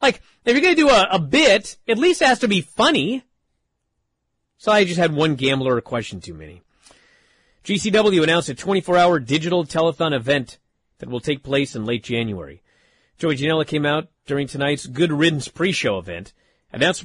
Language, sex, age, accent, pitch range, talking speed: English, male, 40-59, American, 130-205 Hz, 180 wpm